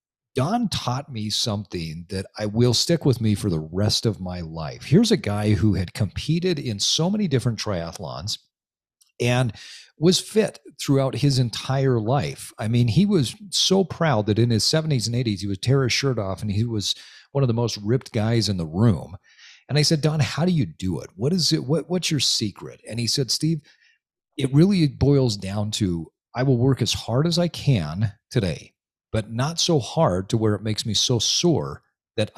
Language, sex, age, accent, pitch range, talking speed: English, male, 40-59, American, 100-140 Hz, 200 wpm